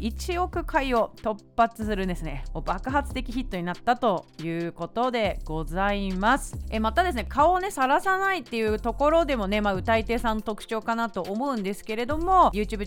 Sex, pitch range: female, 185-295 Hz